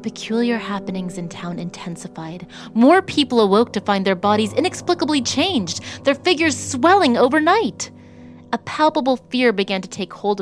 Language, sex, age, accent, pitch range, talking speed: English, female, 30-49, American, 170-245 Hz, 145 wpm